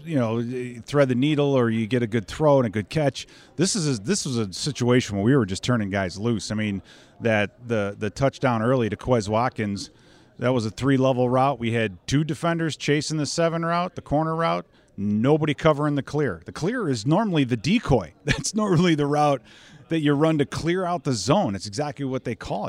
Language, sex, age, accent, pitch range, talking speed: English, male, 40-59, American, 115-145 Hz, 220 wpm